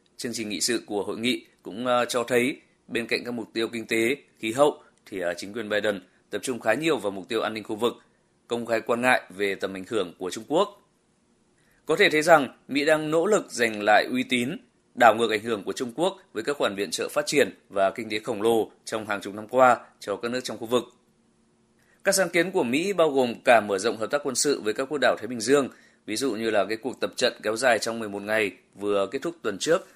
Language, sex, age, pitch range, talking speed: Vietnamese, male, 20-39, 110-140 Hz, 250 wpm